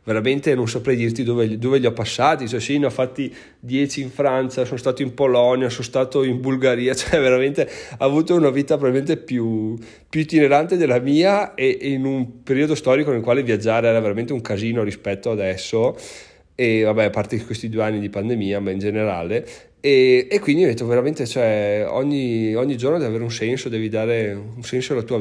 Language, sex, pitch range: Italian, male, 110-130 Hz